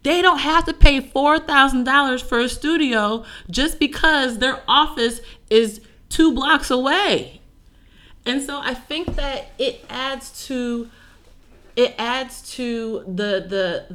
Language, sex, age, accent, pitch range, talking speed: English, female, 30-49, American, 160-215 Hz, 140 wpm